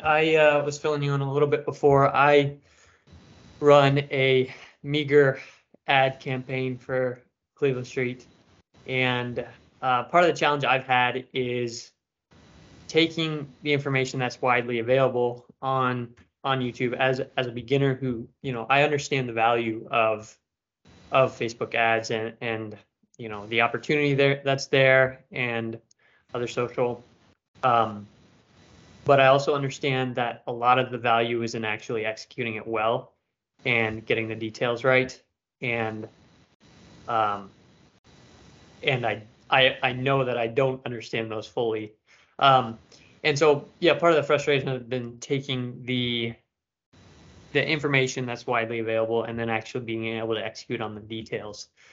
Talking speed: 145 wpm